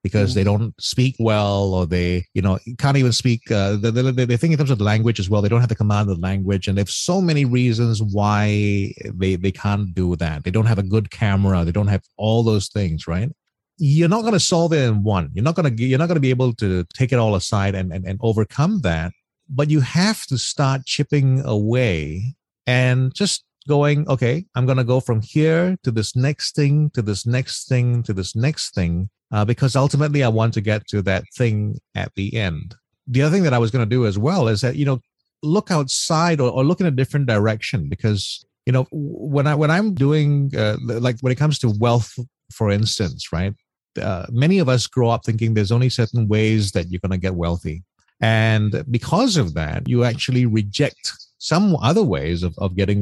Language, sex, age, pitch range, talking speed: English, male, 30-49, 105-135 Hz, 225 wpm